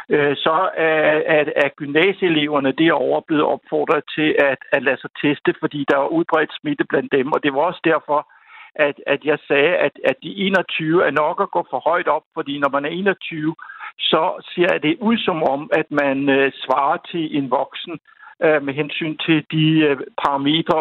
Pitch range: 145-185 Hz